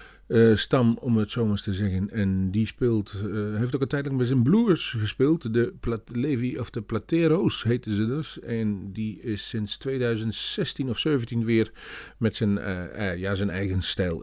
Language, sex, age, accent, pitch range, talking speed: Dutch, male, 40-59, Dutch, 100-135 Hz, 190 wpm